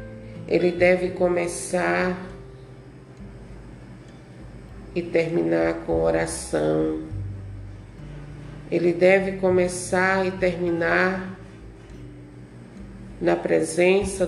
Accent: Brazilian